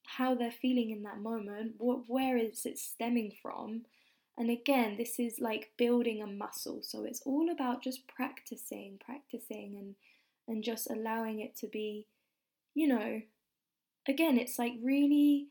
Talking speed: 155 wpm